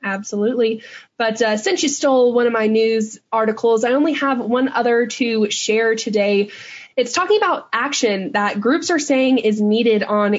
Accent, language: American, English